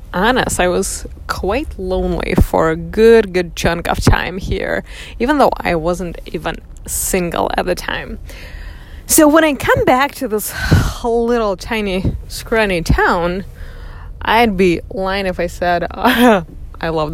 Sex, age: female, 20-39